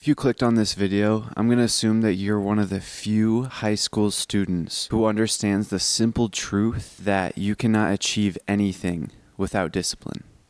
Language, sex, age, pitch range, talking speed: English, male, 20-39, 105-125 Hz, 175 wpm